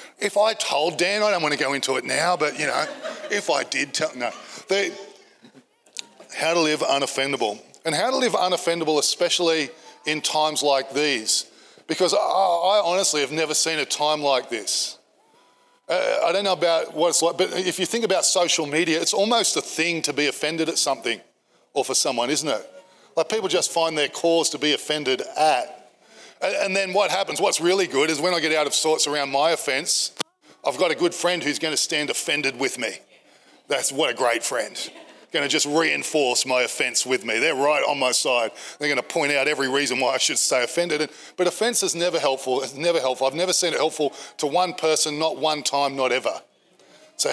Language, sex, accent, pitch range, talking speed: English, male, Australian, 140-175 Hz, 210 wpm